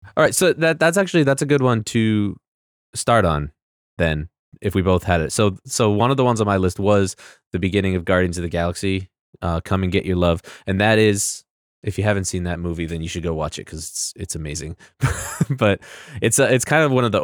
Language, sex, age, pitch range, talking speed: English, male, 20-39, 85-105 Hz, 245 wpm